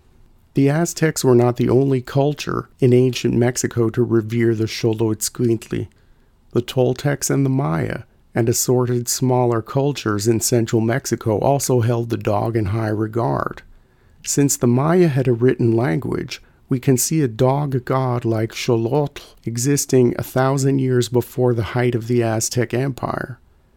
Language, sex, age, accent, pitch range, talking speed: English, male, 40-59, American, 115-130 Hz, 150 wpm